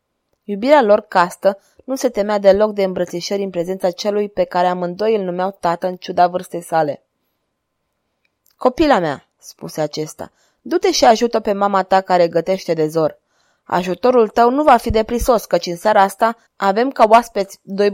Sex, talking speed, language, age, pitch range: female, 165 wpm, Romanian, 20-39, 180-225 Hz